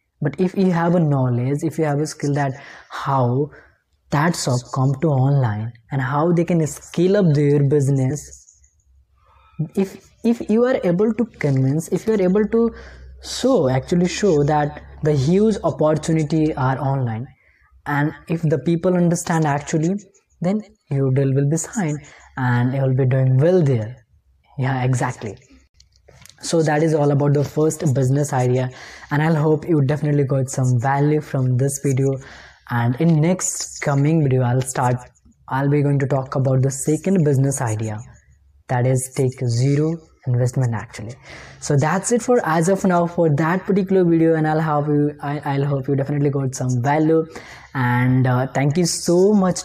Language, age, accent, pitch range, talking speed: English, 20-39, Indian, 130-165 Hz, 170 wpm